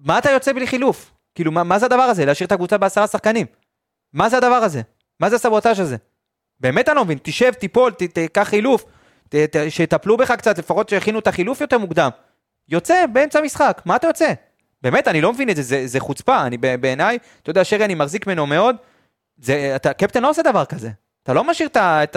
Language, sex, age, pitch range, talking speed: Hebrew, male, 30-49, 150-235 Hz, 205 wpm